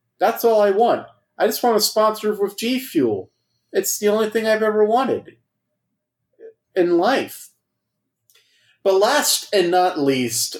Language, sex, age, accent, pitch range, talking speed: English, male, 30-49, American, 135-190 Hz, 140 wpm